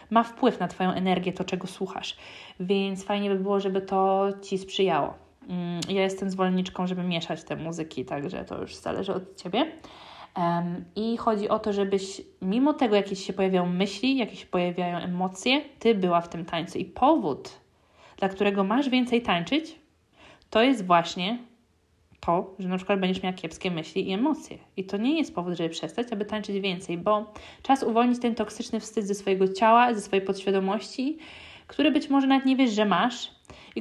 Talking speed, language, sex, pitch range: 180 wpm, Polish, female, 180-225 Hz